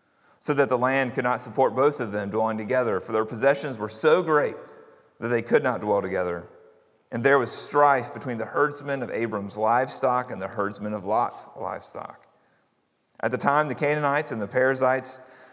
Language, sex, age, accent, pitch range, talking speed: English, male, 40-59, American, 115-140 Hz, 185 wpm